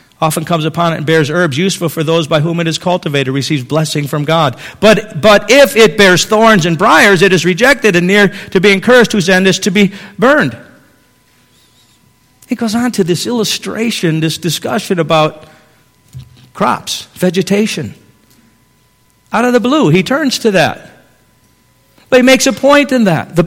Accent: American